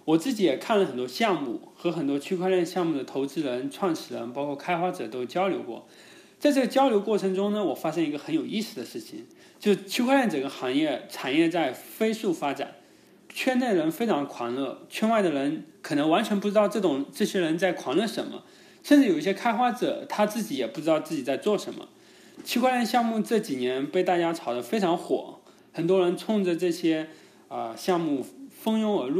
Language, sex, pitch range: English, male, 170-270 Hz